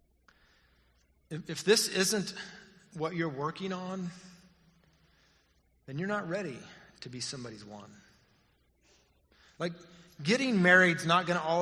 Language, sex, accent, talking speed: English, male, American, 110 wpm